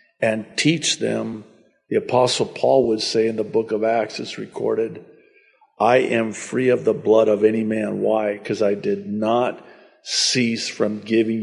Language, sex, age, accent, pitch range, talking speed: English, male, 50-69, American, 110-165 Hz, 170 wpm